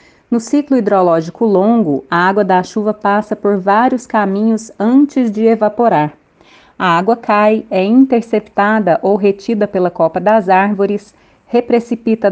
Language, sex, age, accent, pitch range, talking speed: Portuguese, female, 30-49, Brazilian, 185-230 Hz, 130 wpm